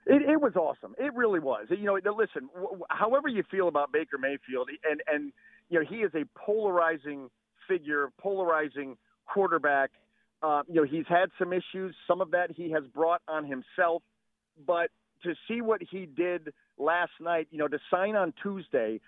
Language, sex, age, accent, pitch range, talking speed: English, male, 40-59, American, 150-185 Hz, 175 wpm